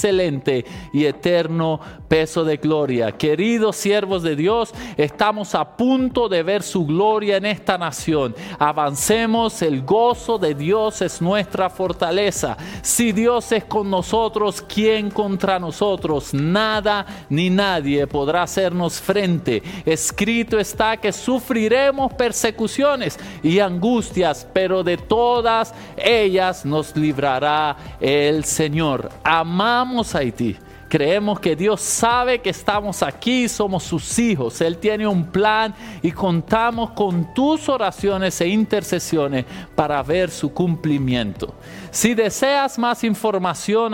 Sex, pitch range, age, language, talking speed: male, 165-220 Hz, 50-69, Spanish, 120 wpm